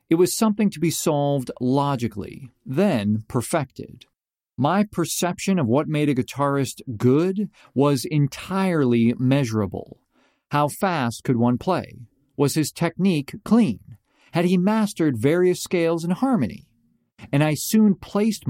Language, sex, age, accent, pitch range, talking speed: English, male, 40-59, American, 125-185 Hz, 130 wpm